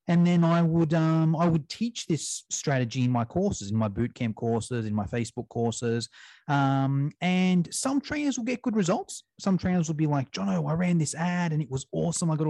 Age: 30-49